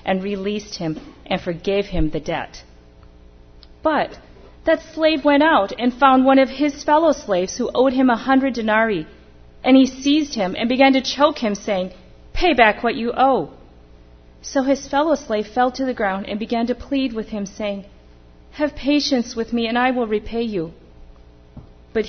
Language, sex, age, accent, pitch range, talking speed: English, female, 40-59, American, 165-260 Hz, 180 wpm